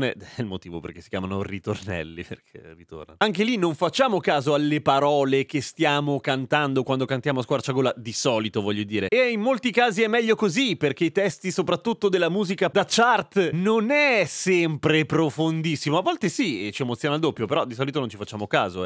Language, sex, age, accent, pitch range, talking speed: Italian, male, 30-49, native, 130-190 Hz, 195 wpm